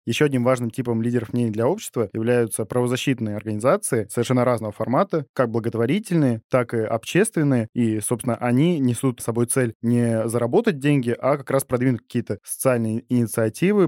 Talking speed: 155 wpm